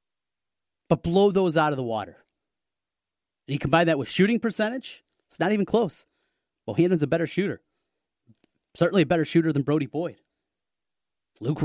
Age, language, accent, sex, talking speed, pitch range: 30-49, English, American, male, 150 wpm, 125-195 Hz